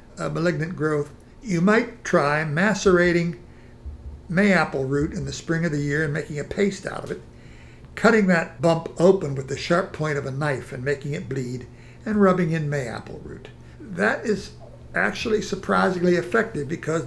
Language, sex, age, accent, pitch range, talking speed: English, male, 60-79, American, 130-180 Hz, 170 wpm